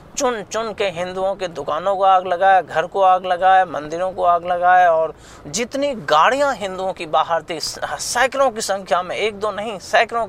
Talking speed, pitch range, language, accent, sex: 185 wpm, 150-195 Hz, Hindi, native, male